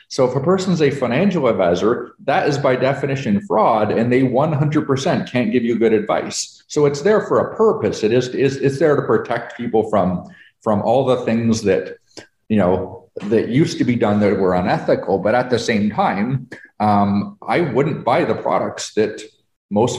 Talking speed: 185 wpm